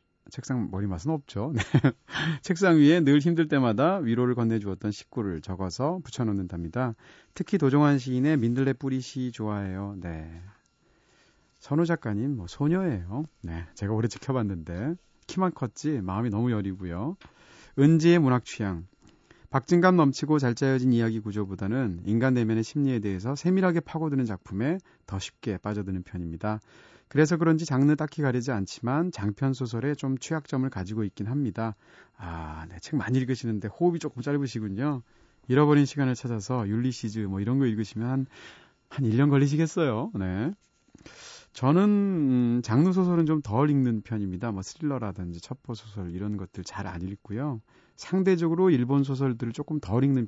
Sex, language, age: male, Korean, 40-59